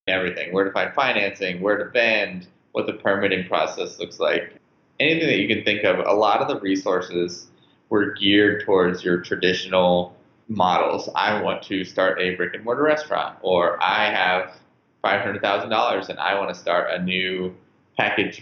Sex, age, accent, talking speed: male, 20-39, American, 170 wpm